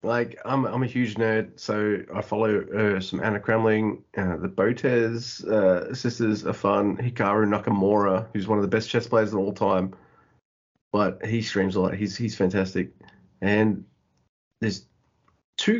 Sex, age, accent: male, 30-49, Australian